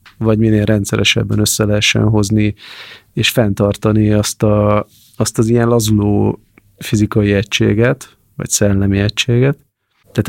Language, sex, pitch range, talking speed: Hungarian, male, 105-115 Hz, 115 wpm